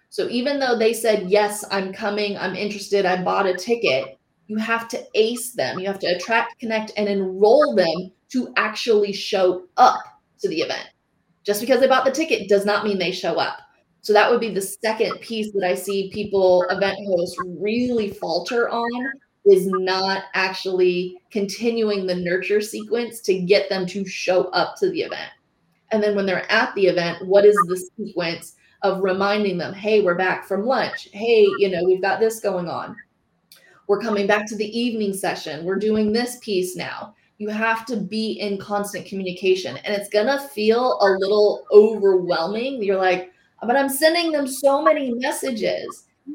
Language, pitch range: English, 190-235 Hz